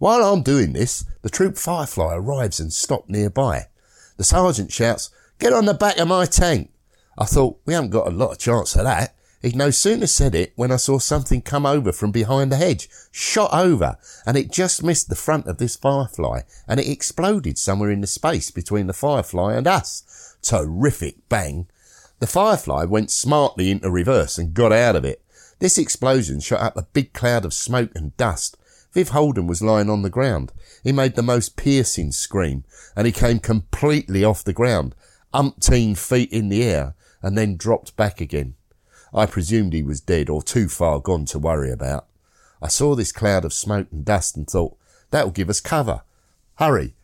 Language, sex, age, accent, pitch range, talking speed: English, male, 50-69, British, 90-135 Hz, 195 wpm